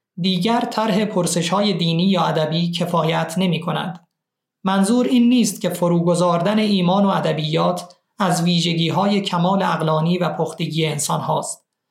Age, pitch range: 30-49, 170-205 Hz